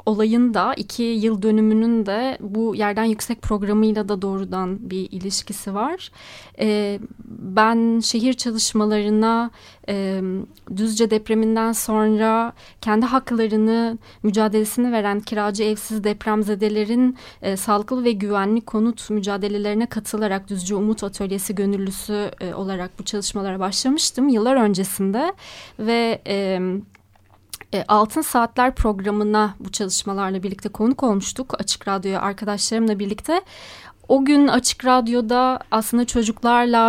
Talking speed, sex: 110 wpm, female